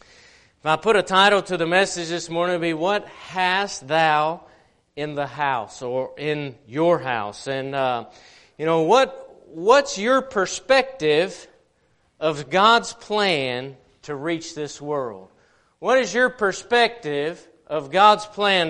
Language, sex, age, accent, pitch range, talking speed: English, male, 40-59, American, 150-185 Hz, 140 wpm